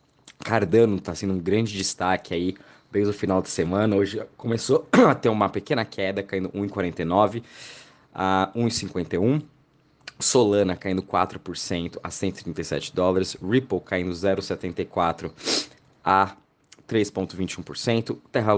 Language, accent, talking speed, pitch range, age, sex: Portuguese, Brazilian, 115 wpm, 90-105 Hz, 20-39, male